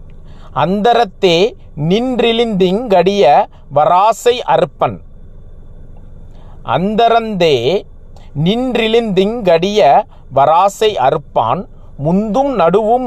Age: 50-69